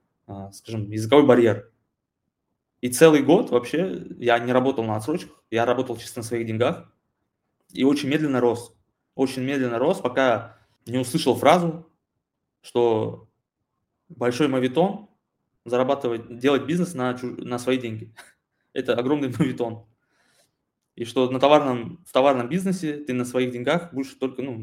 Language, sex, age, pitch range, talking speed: Russian, male, 20-39, 115-140 Hz, 140 wpm